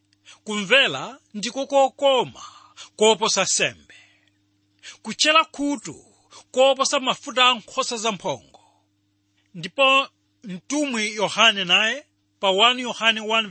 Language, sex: English, male